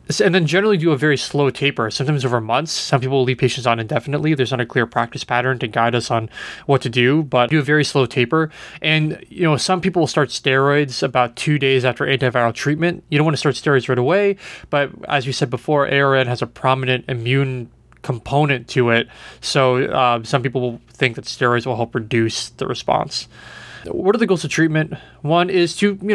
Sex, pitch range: male, 125-145 Hz